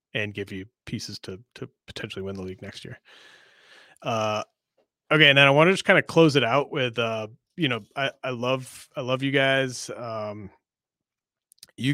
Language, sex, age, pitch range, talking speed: English, male, 30-49, 110-135 Hz, 190 wpm